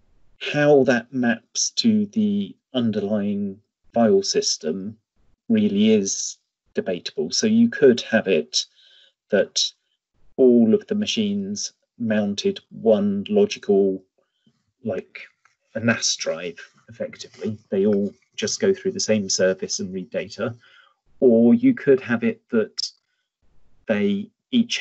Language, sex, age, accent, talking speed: English, male, 40-59, British, 115 wpm